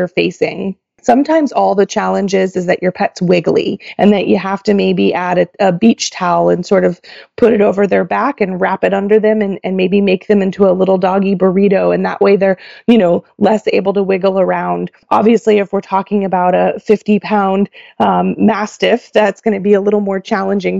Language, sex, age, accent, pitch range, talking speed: English, female, 20-39, American, 190-225 Hz, 210 wpm